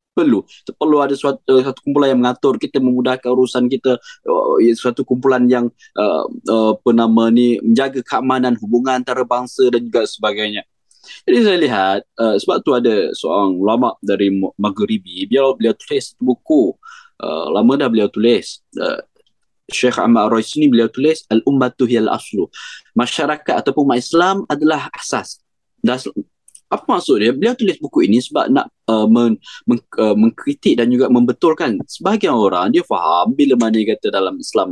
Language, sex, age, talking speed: Malay, male, 20-39, 155 wpm